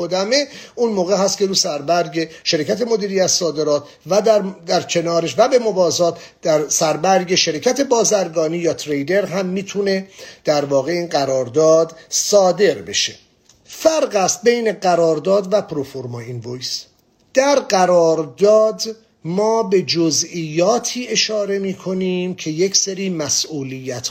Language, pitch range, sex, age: English, 160-205 Hz, male, 50-69